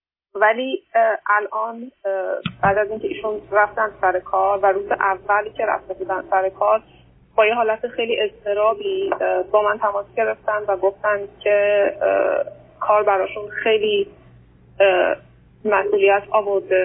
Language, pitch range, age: Persian, 195-230 Hz, 30-49